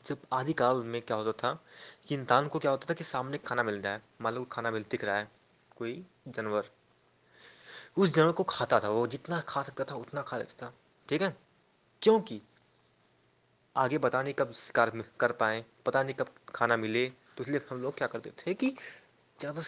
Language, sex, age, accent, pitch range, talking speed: Hindi, male, 20-39, native, 120-165 Hz, 110 wpm